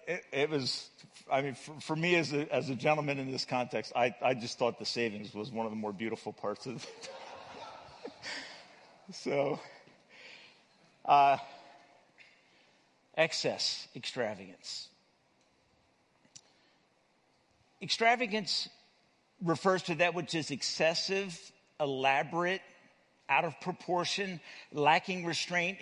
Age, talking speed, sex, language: 50-69, 110 wpm, male, English